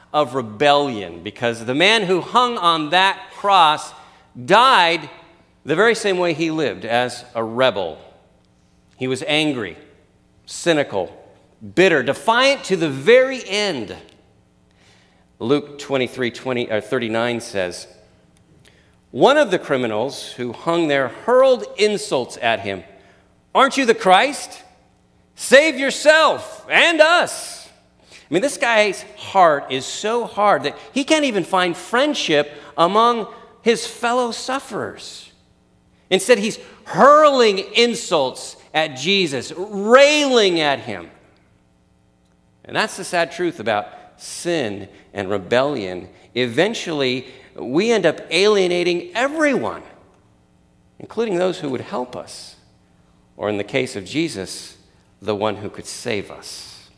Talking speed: 120 wpm